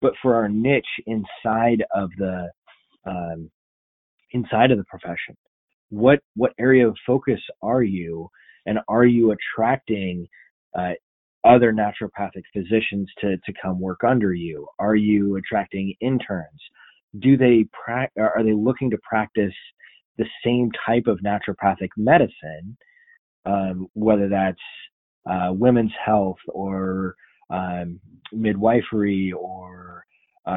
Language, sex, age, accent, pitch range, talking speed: English, male, 20-39, American, 90-110 Hz, 120 wpm